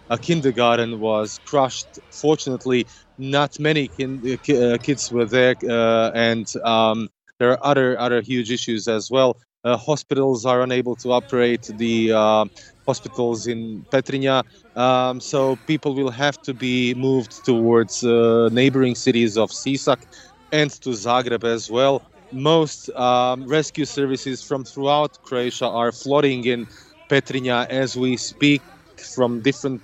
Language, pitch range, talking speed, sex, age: English, 120-135 Hz, 135 wpm, male, 30-49